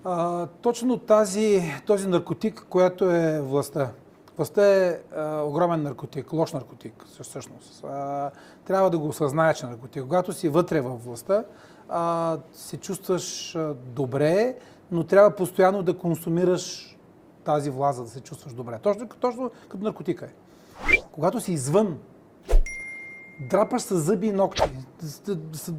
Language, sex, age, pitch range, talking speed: Bulgarian, male, 30-49, 155-195 Hz, 135 wpm